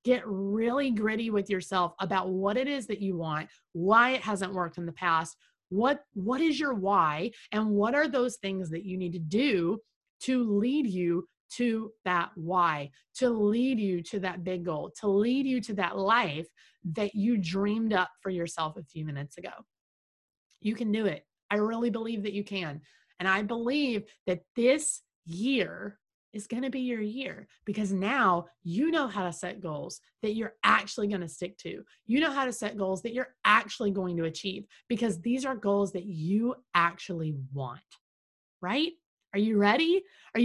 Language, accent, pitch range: English, American, 185-250 Hz